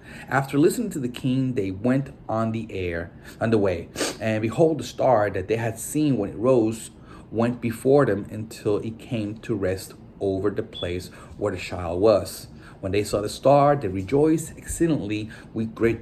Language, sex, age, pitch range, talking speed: English, male, 30-49, 100-130 Hz, 185 wpm